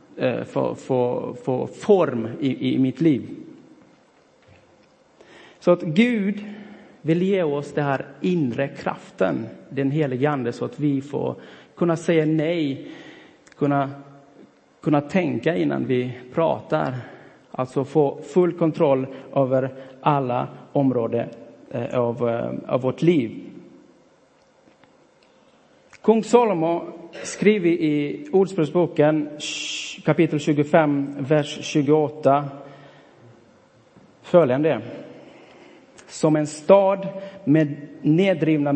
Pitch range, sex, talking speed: 140-170 Hz, male, 95 wpm